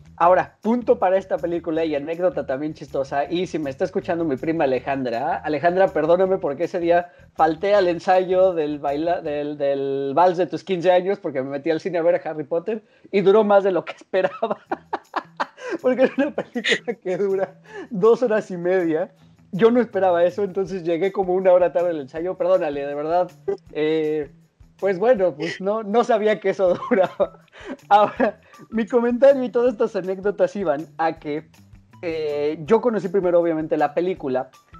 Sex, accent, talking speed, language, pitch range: male, Mexican, 180 wpm, Spanish, 145-195 Hz